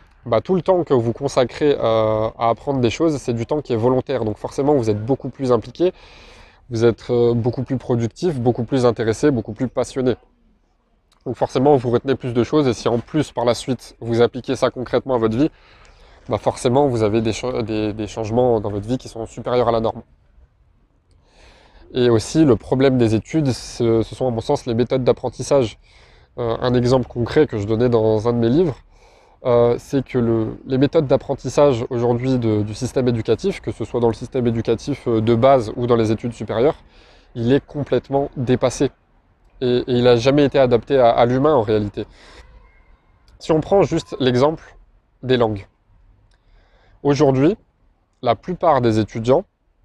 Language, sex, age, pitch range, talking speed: French, male, 20-39, 115-135 Hz, 185 wpm